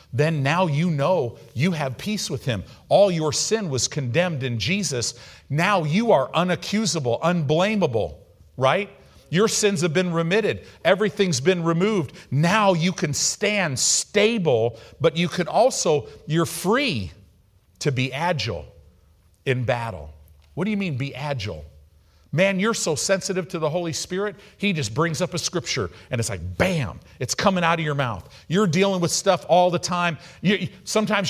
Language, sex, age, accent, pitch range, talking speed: English, male, 50-69, American, 105-180 Hz, 160 wpm